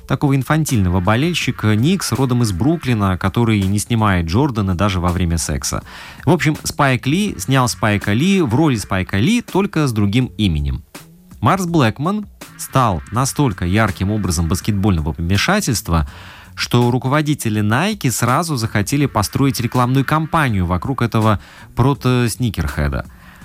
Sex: male